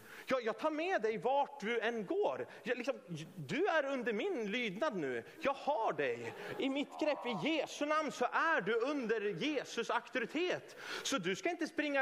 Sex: male